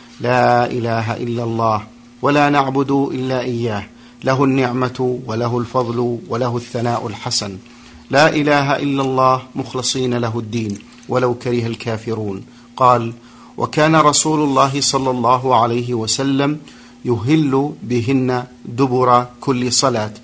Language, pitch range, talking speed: Arabic, 120-135 Hz, 115 wpm